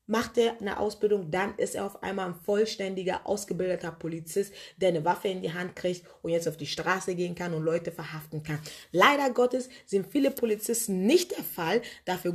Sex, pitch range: female, 185-240 Hz